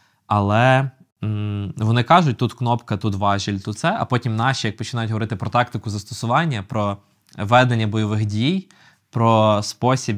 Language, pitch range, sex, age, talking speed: Ukrainian, 100-120 Hz, male, 20-39, 145 wpm